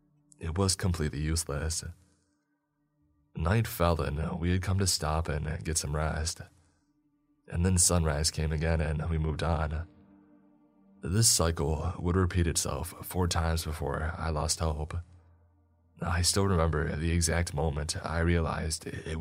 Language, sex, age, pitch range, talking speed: English, male, 20-39, 80-90 Hz, 140 wpm